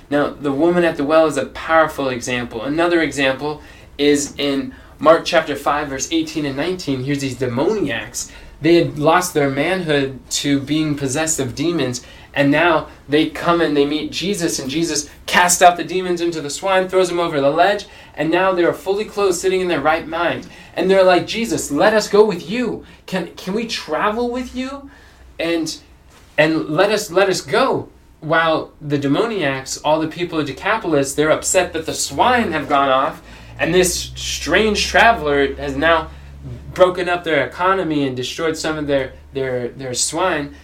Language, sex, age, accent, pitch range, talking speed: English, male, 20-39, American, 135-180 Hz, 180 wpm